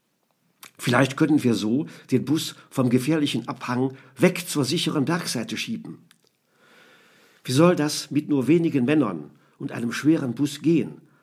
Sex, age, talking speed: male, 50-69, 140 wpm